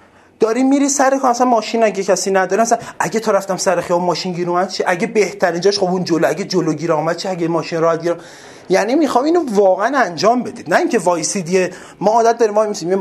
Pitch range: 185-240 Hz